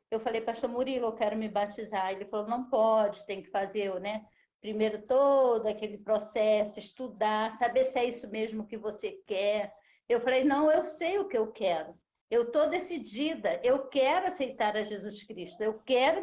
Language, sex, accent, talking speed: Portuguese, female, Brazilian, 180 wpm